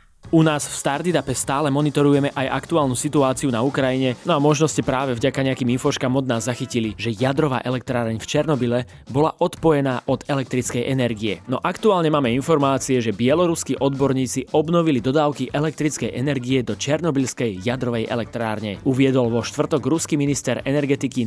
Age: 20-39